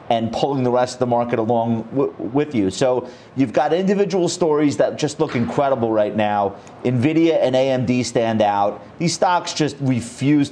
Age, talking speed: 30-49, 170 wpm